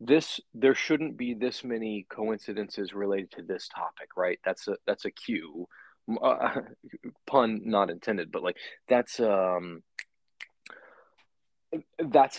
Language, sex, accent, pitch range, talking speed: English, male, American, 105-155 Hz, 125 wpm